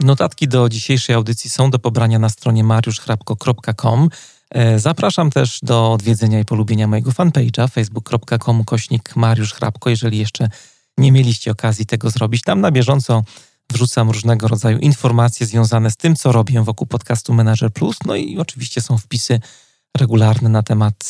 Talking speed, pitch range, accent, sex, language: 150 wpm, 110-130 Hz, native, male, Polish